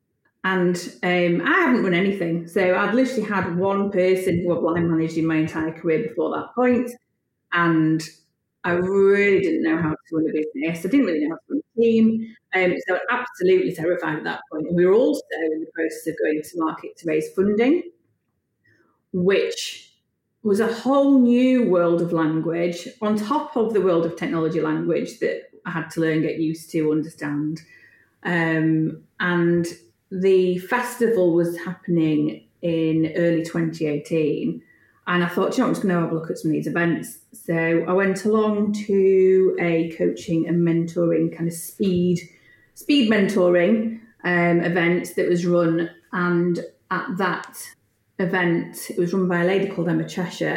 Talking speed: 175 wpm